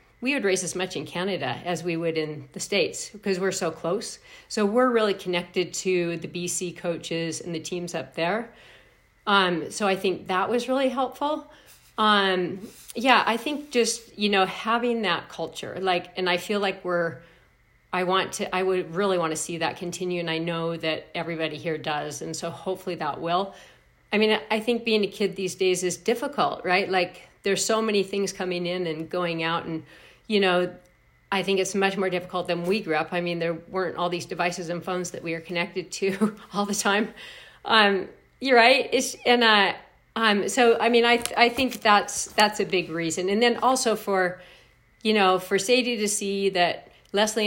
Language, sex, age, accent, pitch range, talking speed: English, female, 40-59, American, 175-205 Hz, 200 wpm